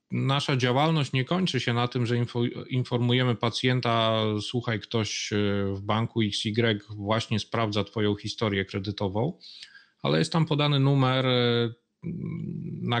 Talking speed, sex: 120 wpm, male